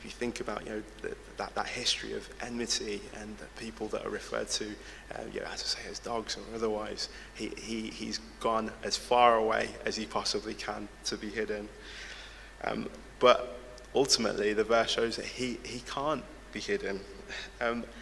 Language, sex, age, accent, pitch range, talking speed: English, male, 20-39, British, 110-120 Hz, 185 wpm